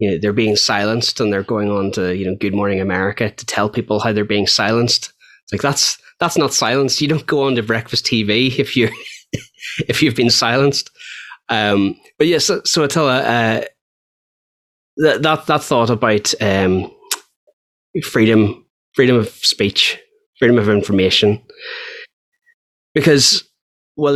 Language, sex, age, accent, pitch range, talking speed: English, male, 20-39, Irish, 100-125 Hz, 160 wpm